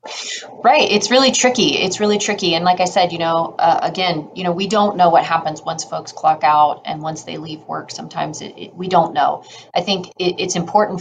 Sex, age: female, 30-49